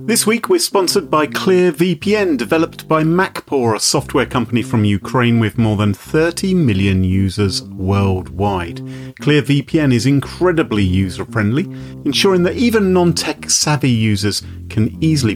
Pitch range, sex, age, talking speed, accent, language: 100-145 Hz, male, 40-59, 130 wpm, British, English